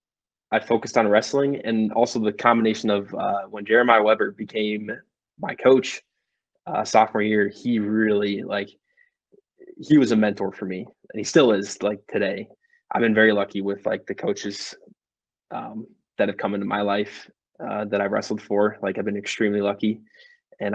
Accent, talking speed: American, 175 wpm